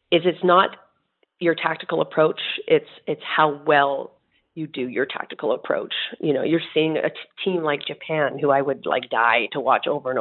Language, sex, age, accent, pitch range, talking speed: English, female, 40-59, American, 145-175 Hz, 195 wpm